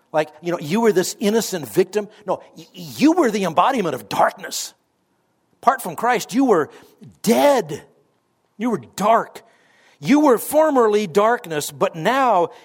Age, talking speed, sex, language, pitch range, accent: 60-79, 140 wpm, male, English, 135-205 Hz, American